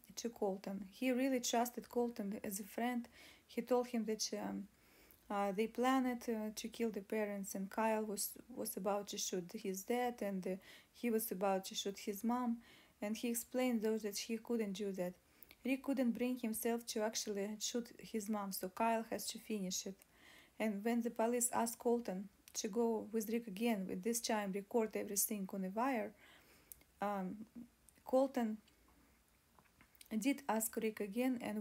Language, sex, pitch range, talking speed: English, female, 210-240 Hz, 170 wpm